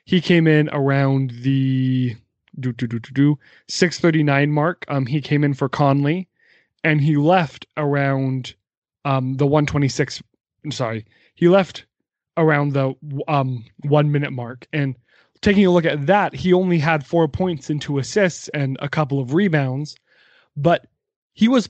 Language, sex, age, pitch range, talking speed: English, male, 20-39, 135-155 Hz, 160 wpm